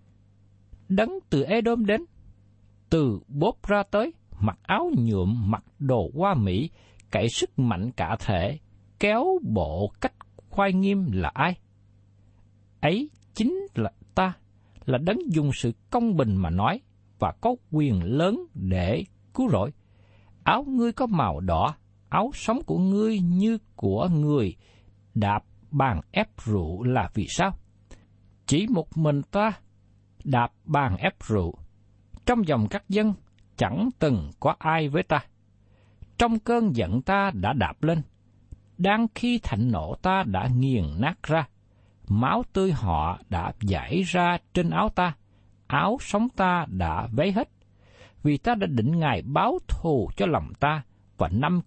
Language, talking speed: Vietnamese, 145 wpm